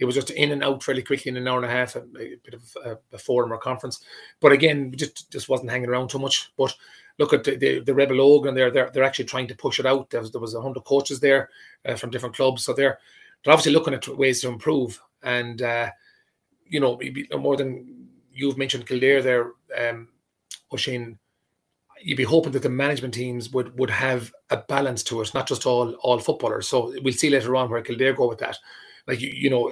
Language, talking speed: English, 235 wpm